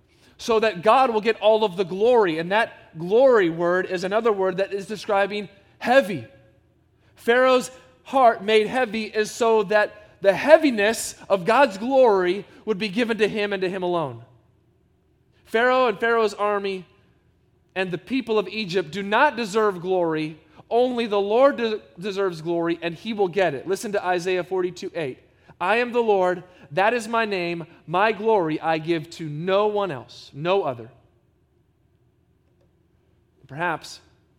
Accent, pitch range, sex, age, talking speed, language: American, 135-215 Hz, male, 30-49, 150 wpm, English